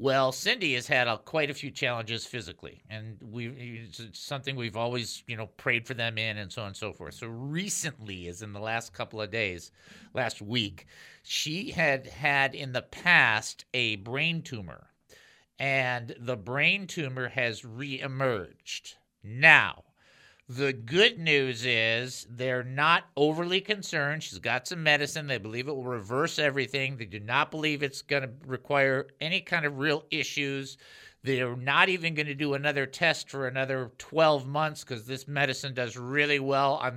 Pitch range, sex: 120-155 Hz, male